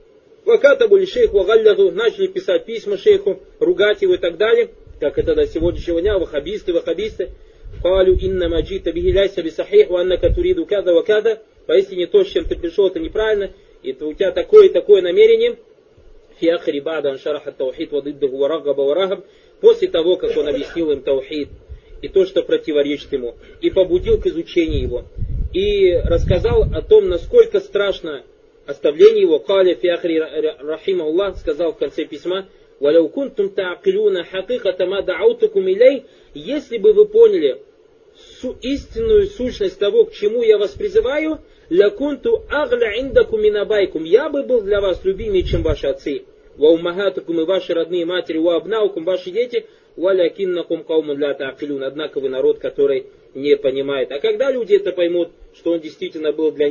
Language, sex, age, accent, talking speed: Russian, male, 30-49, native, 125 wpm